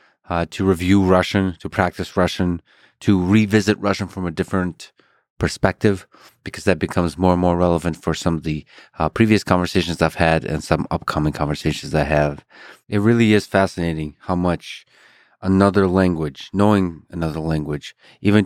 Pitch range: 80-95 Hz